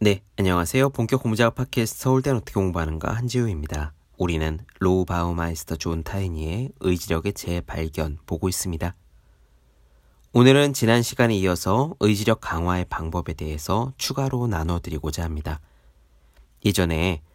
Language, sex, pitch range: Korean, male, 80-120 Hz